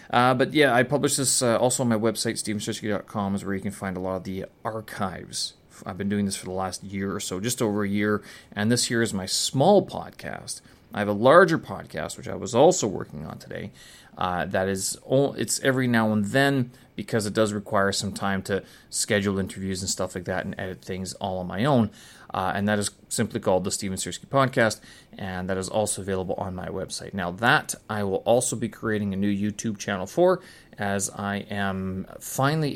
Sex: male